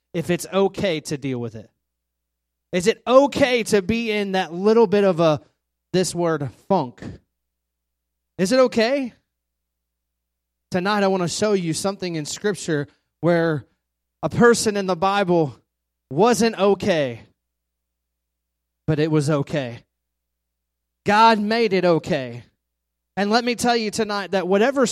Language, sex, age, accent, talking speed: English, male, 30-49, American, 135 wpm